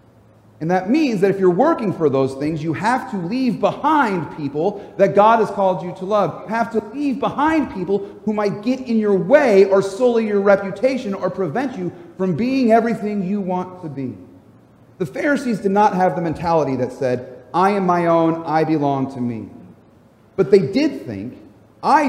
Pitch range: 120-195 Hz